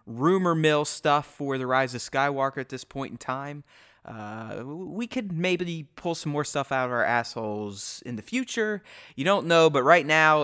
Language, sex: English, male